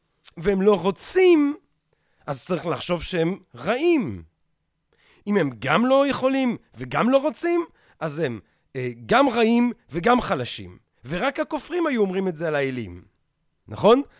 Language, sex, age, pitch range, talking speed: Hebrew, male, 40-59, 185-255 Hz, 135 wpm